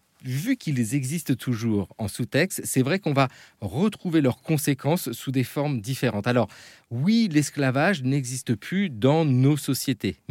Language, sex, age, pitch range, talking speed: French, male, 40-59, 115-150 Hz, 145 wpm